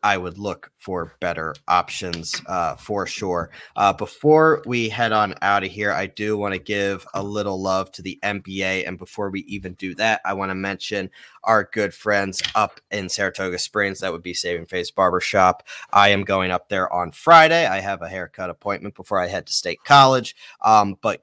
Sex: male